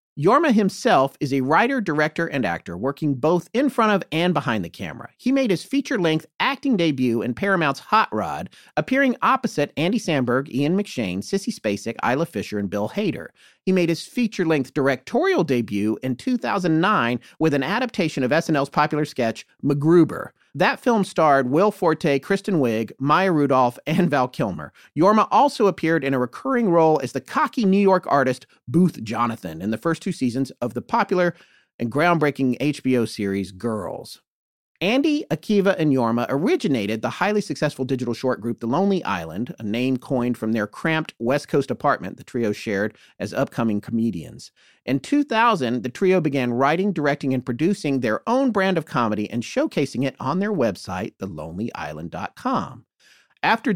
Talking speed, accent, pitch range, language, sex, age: 165 wpm, American, 125-185 Hz, English, male, 40-59